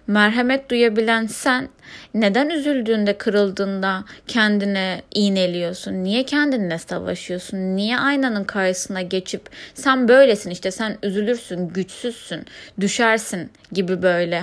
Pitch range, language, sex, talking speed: 190-240 Hz, Turkish, female, 100 wpm